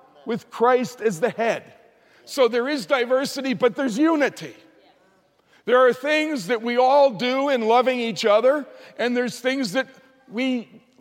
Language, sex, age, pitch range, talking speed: English, male, 50-69, 220-270 Hz, 155 wpm